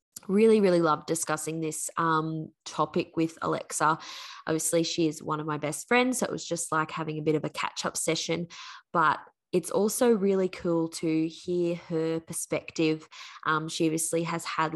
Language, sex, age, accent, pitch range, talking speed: English, female, 20-39, Australian, 145-170 Hz, 175 wpm